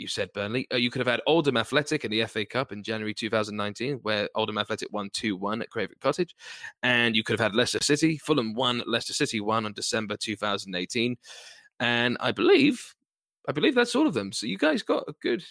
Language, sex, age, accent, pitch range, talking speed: English, male, 20-39, British, 105-140 Hz, 215 wpm